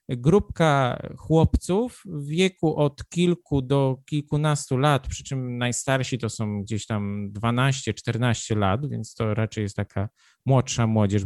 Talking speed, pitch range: 135 wpm, 125-155 Hz